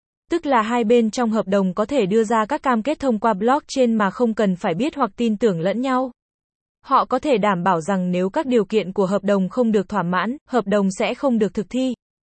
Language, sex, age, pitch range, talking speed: Vietnamese, female, 20-39, 205-255 Hz, 250 wpm